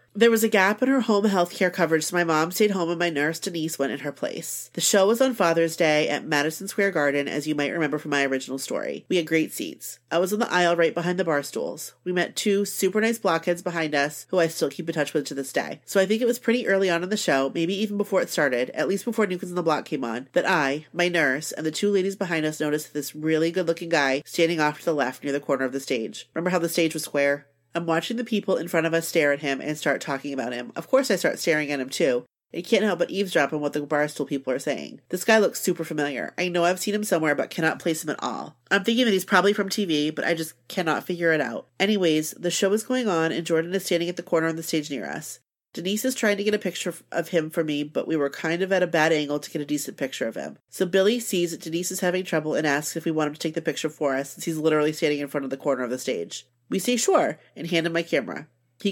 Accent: American